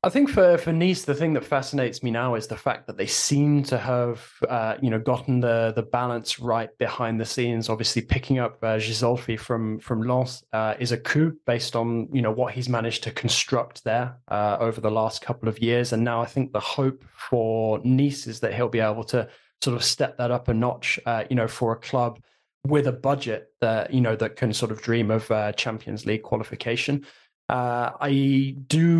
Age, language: 20-39, English